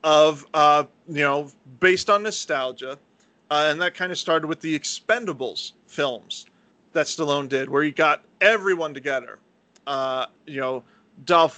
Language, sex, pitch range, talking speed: English, male, 140-180 Hz, 150 wpm